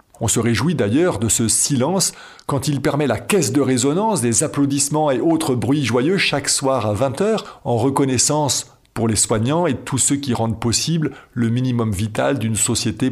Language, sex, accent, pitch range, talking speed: French, male, French, 110-140 Hz, 190 wpm